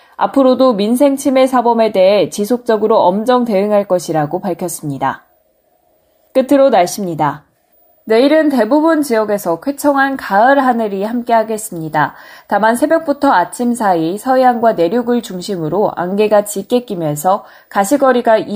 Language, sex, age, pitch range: Korean, female, 20-39, 180-260 Hz